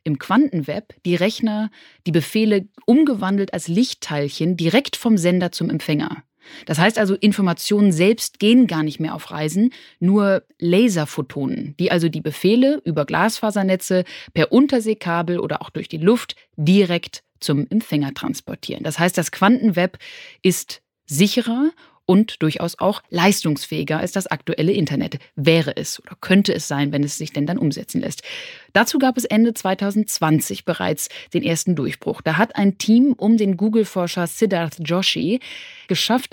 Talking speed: 150 wpm